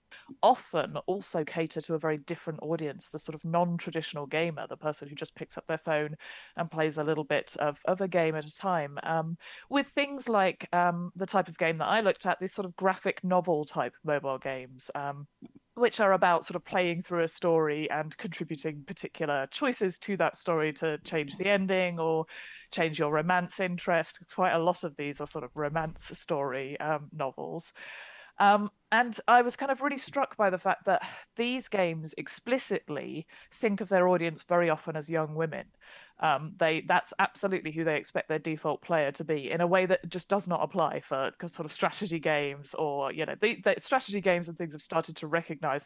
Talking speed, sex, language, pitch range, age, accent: 200 wpm, female, English, 155-185 Hz, 30-49, British